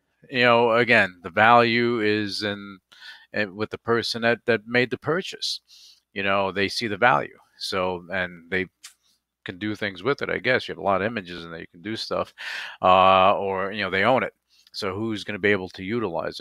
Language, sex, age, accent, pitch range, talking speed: English, male, 50-69, American, 100-125 Hz, 210 wpm